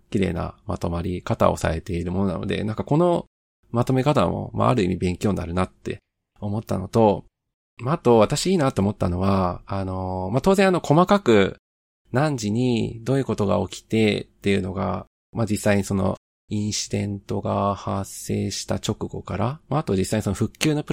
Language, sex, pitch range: Japanese, male, 95-120 Hz